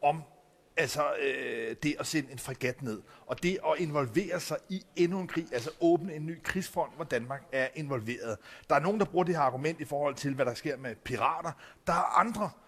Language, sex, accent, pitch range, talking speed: Danish, male, native, 145-185 Hz, 220 wpm